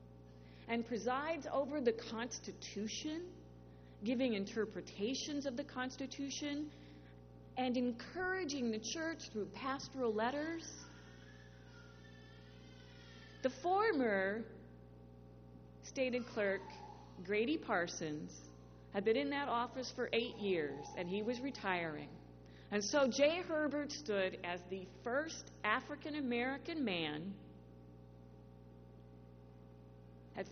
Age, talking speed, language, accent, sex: 40-59, 90 wpm, English, American, female